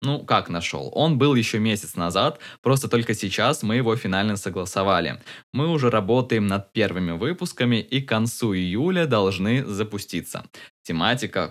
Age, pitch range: 20-39, 100-125 Hz